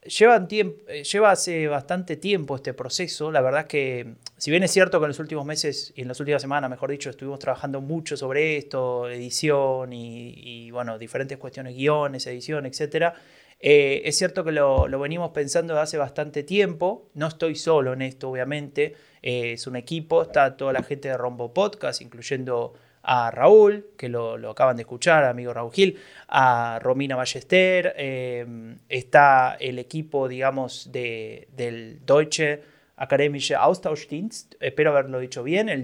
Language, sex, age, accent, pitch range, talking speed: Spanish, male, 20-39, Argentinian, 130-165 Hz, 160 wpm